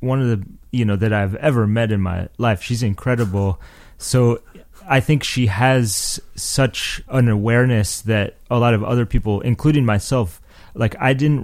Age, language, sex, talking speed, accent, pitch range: 30-49, English, male, 175 wpm, American, 100-120 Hz